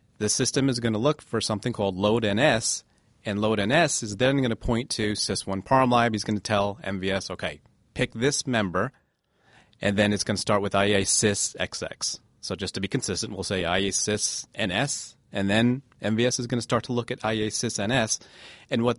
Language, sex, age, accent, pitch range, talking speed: English, male, 30-49, American, 100-125 Hz, 200 wpm